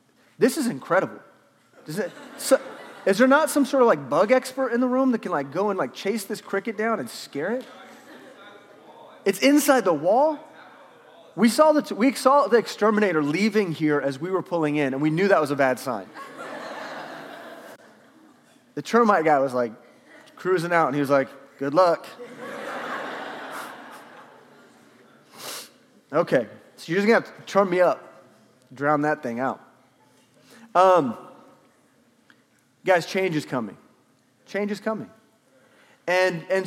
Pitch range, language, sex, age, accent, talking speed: 145-230 Hz, English, male, 30-49, American, 155 wpm